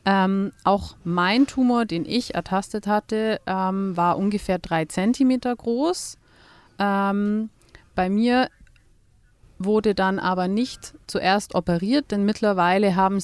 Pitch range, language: 175-210 Hz, German